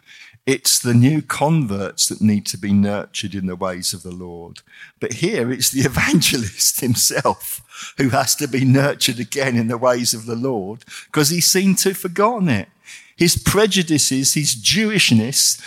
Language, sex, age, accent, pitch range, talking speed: English, male, 50-69, British, 120-170 Hz, 170 wpm